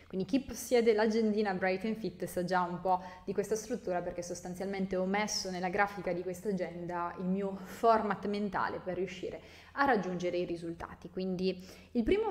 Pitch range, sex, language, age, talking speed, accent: 180-215 Hz, female, Italian, 20-39, 175 wpm, native